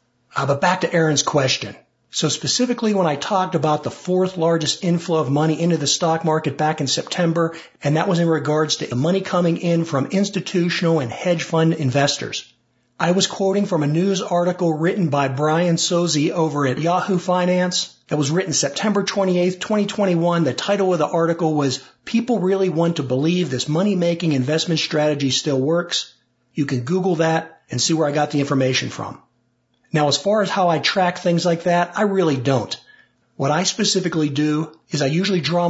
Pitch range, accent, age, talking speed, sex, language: 150-180 Hz, American, 50-69, 190 wpm, male, English